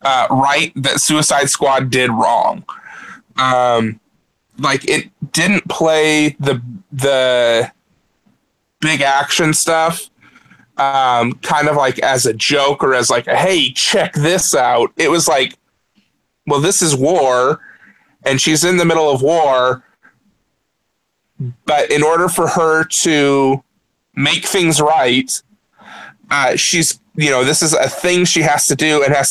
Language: English